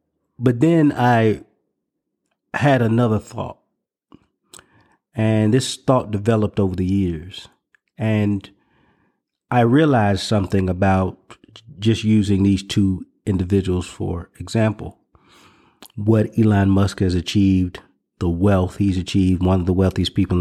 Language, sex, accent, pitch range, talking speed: English, male, American, 95-115 Hz, 115 wpm